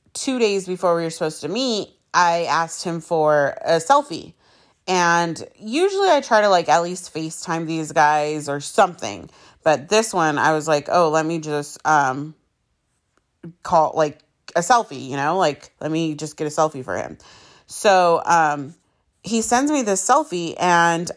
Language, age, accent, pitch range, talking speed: English, 30-49, American, 150-190 Hz, 175 wpm